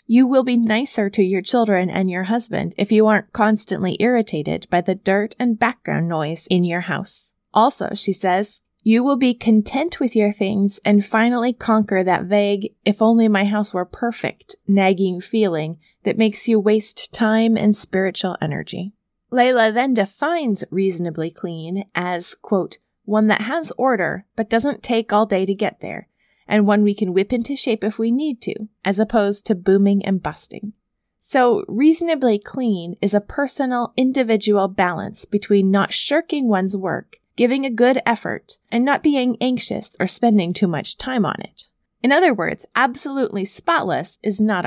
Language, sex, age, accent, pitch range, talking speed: English, female, 20-39, American, 195-235 Hz, 170 wpm